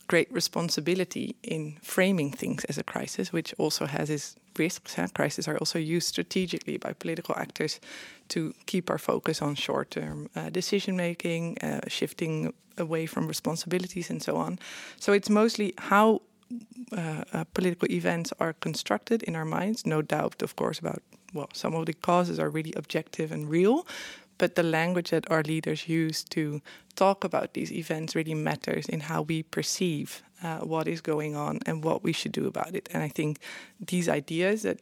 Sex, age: female, 20-39